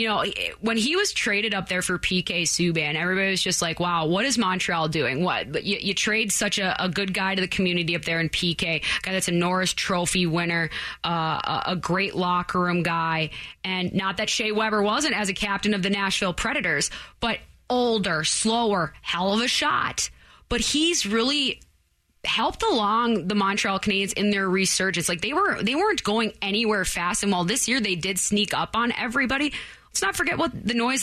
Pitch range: 175-220 Hz